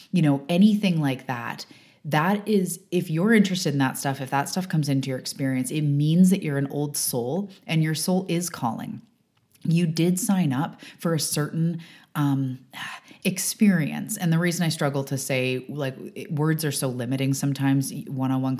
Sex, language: female, English